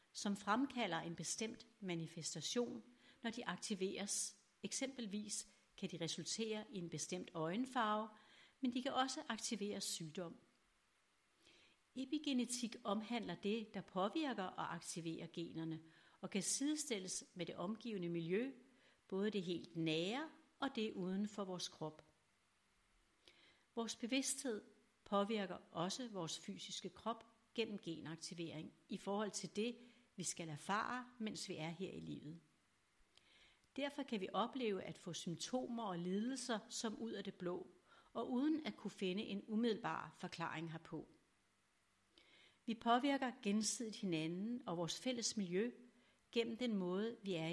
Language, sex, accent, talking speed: Danish, female, native, 135 wpm